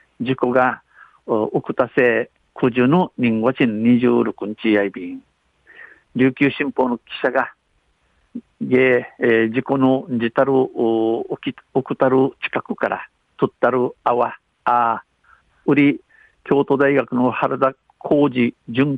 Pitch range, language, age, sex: 115-140 Hz, Japanese, 50-69, male